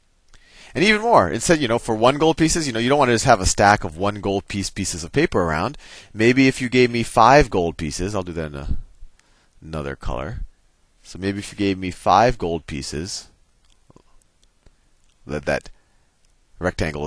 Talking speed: 185 wpm